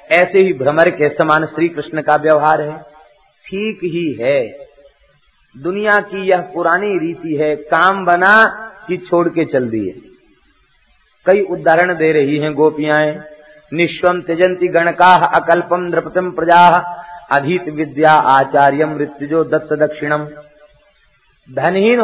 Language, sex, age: Hindi, male, 50-69